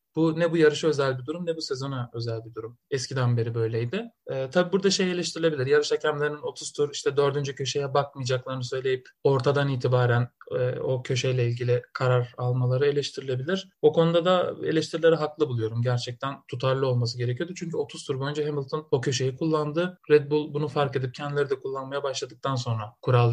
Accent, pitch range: native, 135-175 Hz